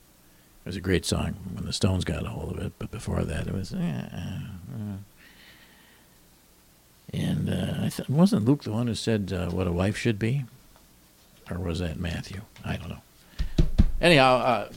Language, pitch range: English, 85-110 Hz